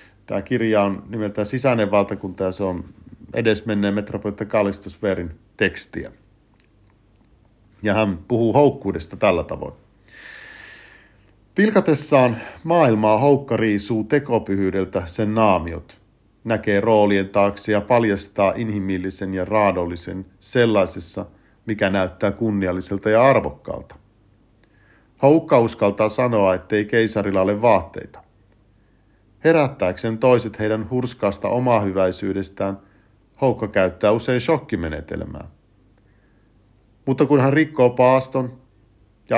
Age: 50-69